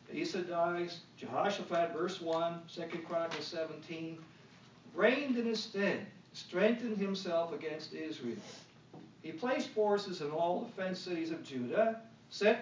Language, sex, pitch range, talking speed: English, male, 160-195 Hz, 130 wpm